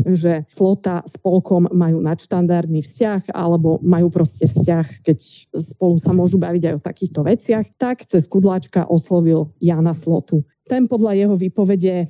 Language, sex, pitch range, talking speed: Slovak, female, 165-195 Hz, 145 wpm